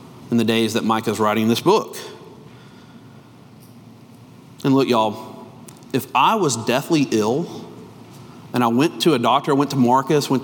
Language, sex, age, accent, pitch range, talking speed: English, male, 40-59, American, 130-185 Hz, 155 wpm